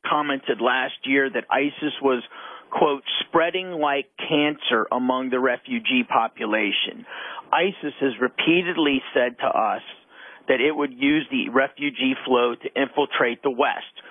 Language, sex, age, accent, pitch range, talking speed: English, male, 40-59, American, 135-180 Hz, 130 wpm